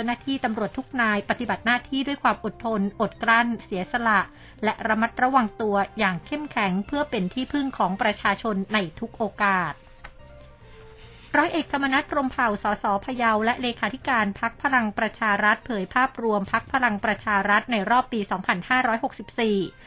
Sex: female